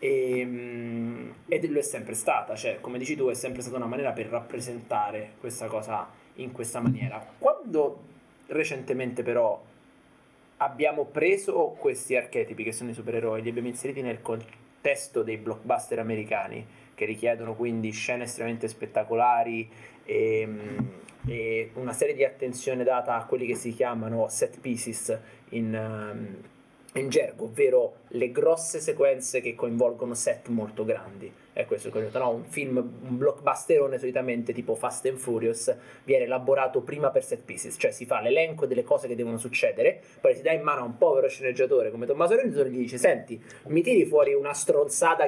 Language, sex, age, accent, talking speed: Italian, male, 20-39, native, 165 wpm